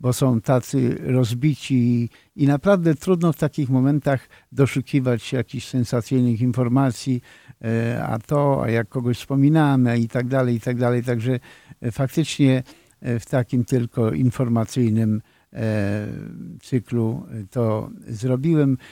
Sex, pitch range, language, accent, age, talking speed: male, 120-140 Hz, Polish, native, 50-69, 110 wpm